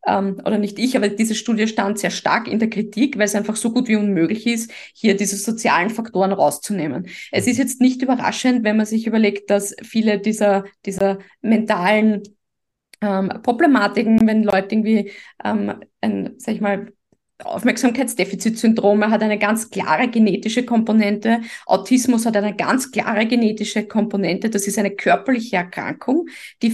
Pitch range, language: 210-240 Hz, German